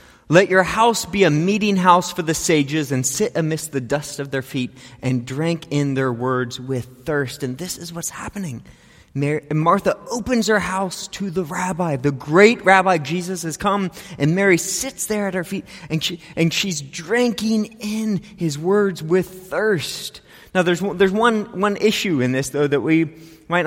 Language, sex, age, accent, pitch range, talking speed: English, male, 30-49, American, 145-215 Hz, 190 wpm